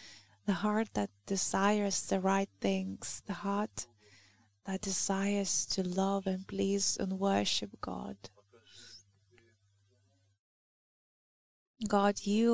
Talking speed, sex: 95 wpm, female